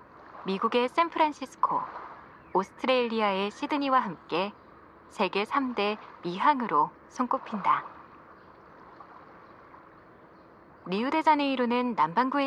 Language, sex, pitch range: Korean, female, 205-275 Hz